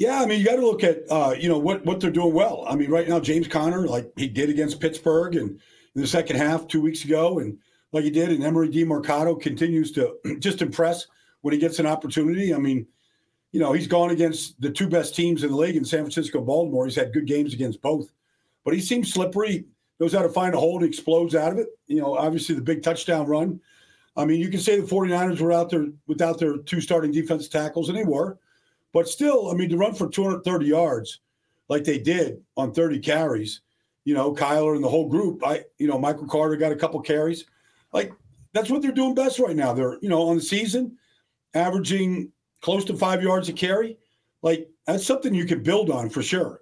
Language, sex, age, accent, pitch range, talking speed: English, male, 50-69, American, 155-175 Hz, 230 wpm